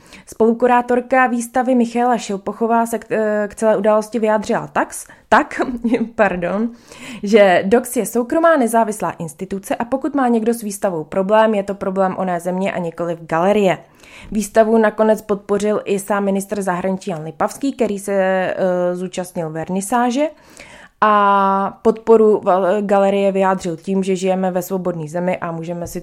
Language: Czech